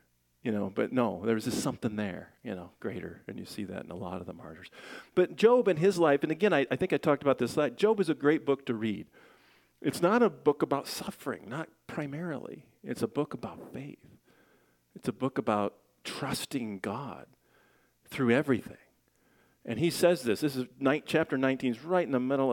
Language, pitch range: English, 100-145 Hz